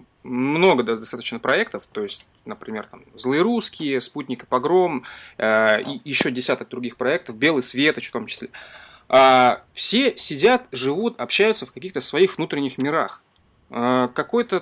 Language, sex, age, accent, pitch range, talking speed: Russian, male, 20-39, native, 125-200 Hz, 145 wpm